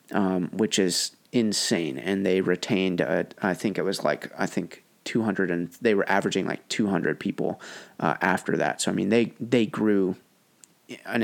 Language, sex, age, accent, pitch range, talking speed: English, male, 30-49, American, 100-110 Hz, 175 wpm